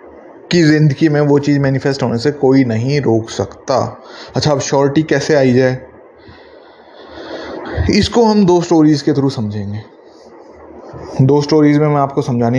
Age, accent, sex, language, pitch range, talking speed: 20-39, native, male, Hindi, 120-145 Hz, 150 wpm